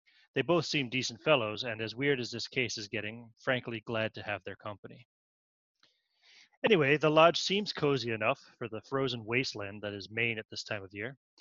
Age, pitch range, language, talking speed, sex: 30-49, 115-140 Hz, English, 195 wpm, male